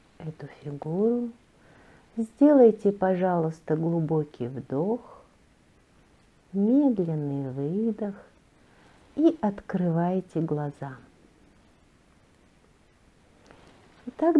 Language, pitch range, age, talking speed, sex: Russian, 170-260 Hz, 50-69, 50 wpm, female